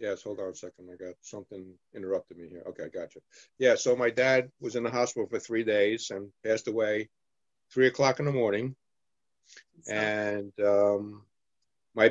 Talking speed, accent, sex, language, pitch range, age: 185 wpm, American, male, English, 105-125 Hz, 50-69